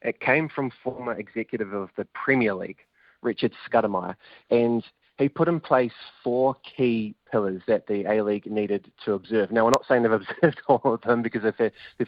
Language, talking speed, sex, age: English, 180 wpm, male, 20-39